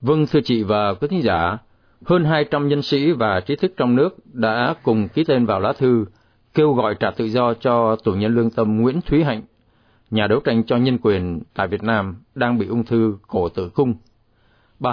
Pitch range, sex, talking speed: 110-145 Hz, male, 215 wpm